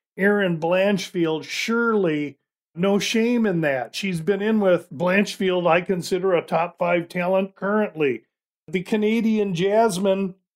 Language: English